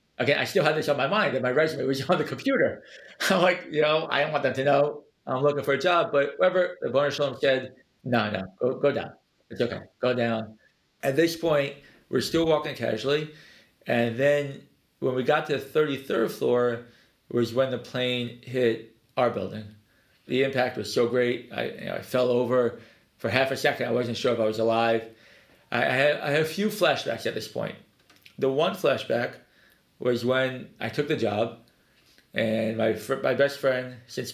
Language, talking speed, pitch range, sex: English, 205 wpm, 115-145 Hz, male